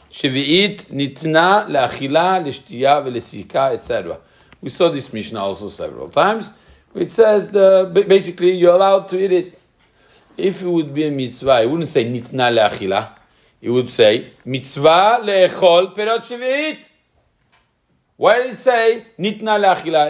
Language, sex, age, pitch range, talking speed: English, male, 50-69, 130-195 Hz, 120 wpm